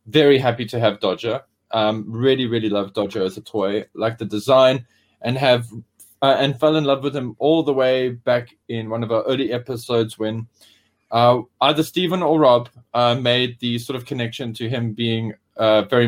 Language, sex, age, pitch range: English, male, 20-39, 110-135 Hz